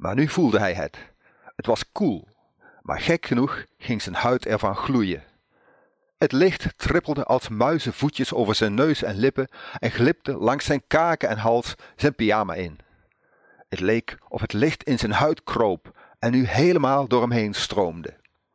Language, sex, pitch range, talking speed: Dutch, male, 105-150 Hz, 170 wpm